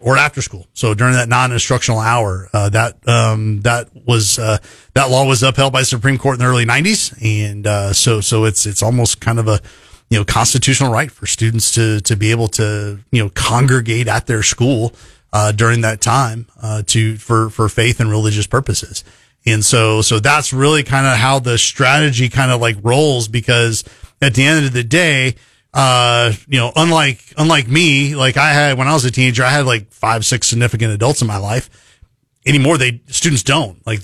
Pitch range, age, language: 110-135 Hz, 30-49, English